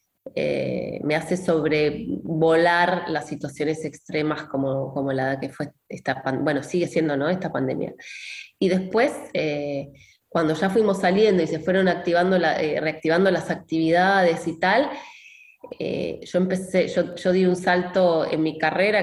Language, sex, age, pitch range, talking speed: English, female, 20-39, 150-185 Hz, 160 wpm